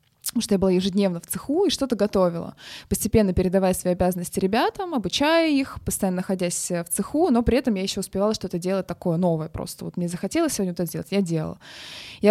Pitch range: 180-220 Hz